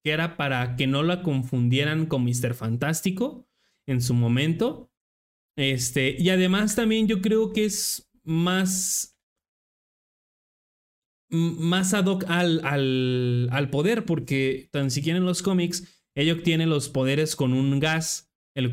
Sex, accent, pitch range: male, Mexican, 135-175 Hz